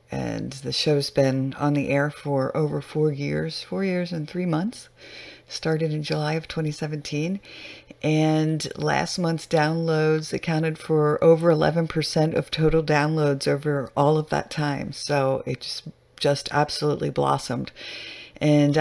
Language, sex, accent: English, female, American